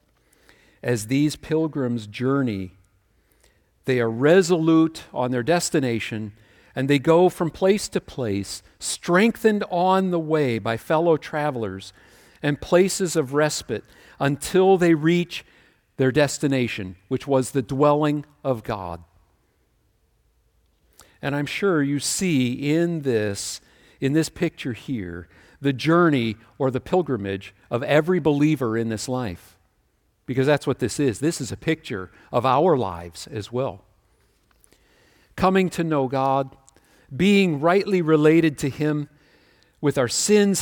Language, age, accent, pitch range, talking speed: English, 50-69, American, 115-160 Hz, 130 wpm